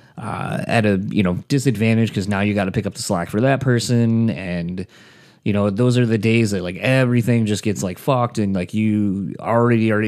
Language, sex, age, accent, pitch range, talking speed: English, male, 30-49, American, 100-120 Hz, 220 wpm